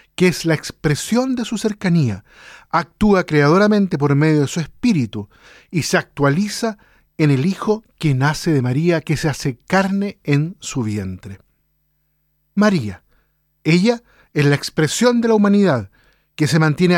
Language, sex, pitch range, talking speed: Spanish, male, 145-190 Hz, 150 wpm